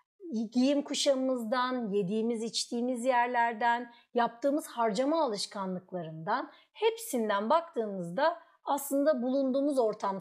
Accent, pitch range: native, 195-295 Hz